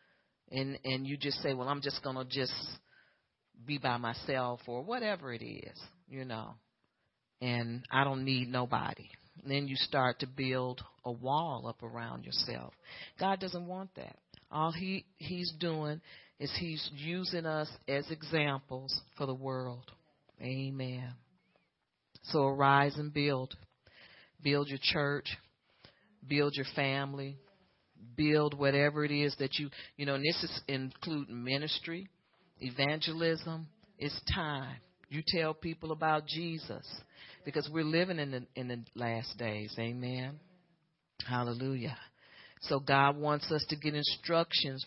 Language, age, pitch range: English, 40-59, 130-160 Hz